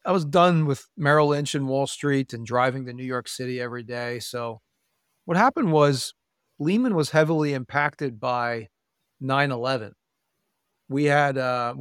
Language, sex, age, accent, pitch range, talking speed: English, male, 40-59, American, 130-155 Hz, 135 wpm